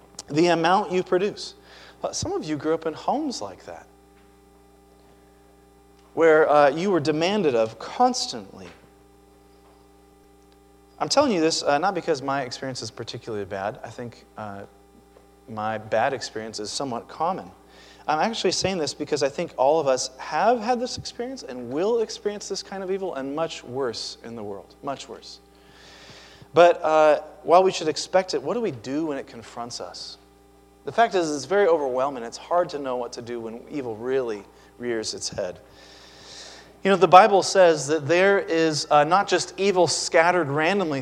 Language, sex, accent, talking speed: Polish, male, American, 175 wpm